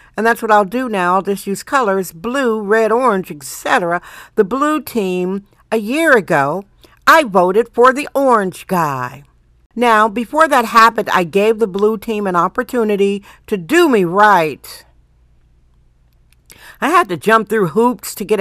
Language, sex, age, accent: English, female, 60-79, American